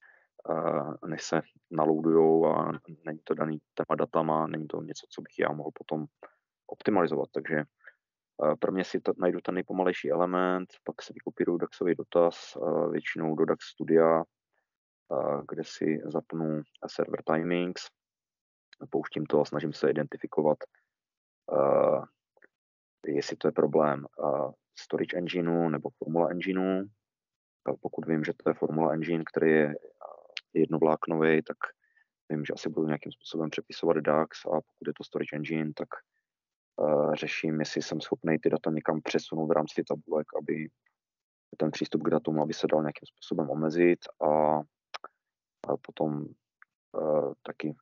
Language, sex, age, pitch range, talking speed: Czech, male, 30-49, 75-85 Hz, 135 wpm